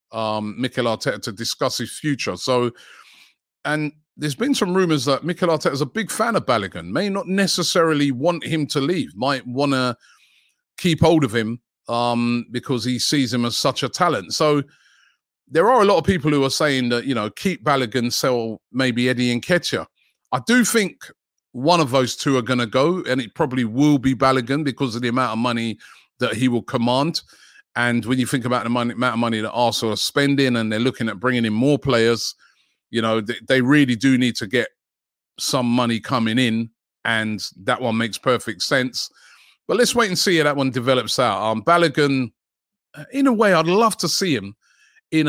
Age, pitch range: 30-49, 120-150 Hz